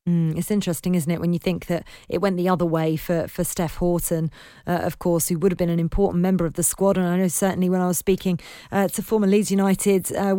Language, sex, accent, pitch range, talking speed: English, female, British, 175-200 Hz, 260 wpm